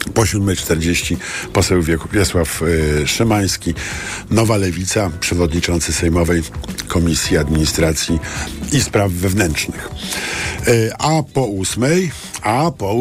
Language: Polish